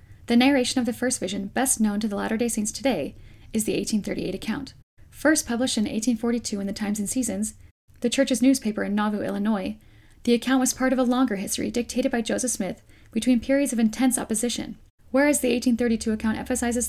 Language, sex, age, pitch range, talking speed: English, female, 10-29, 205-250 Hz, 190 wpm